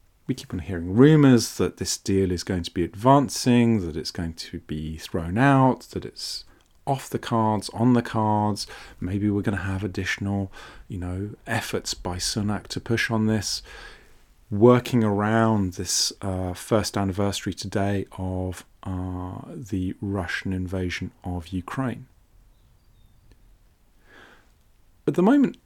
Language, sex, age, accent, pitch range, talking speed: English, male, 40-59, British, 95-120 Hz, 140 wpm